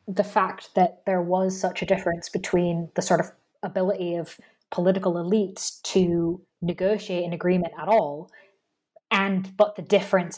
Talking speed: 150 wpm